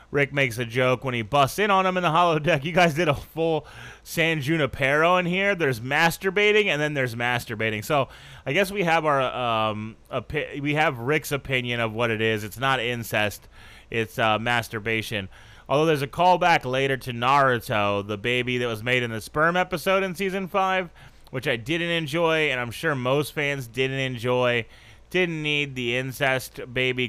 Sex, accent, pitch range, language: male, American, 115-150 Hz, English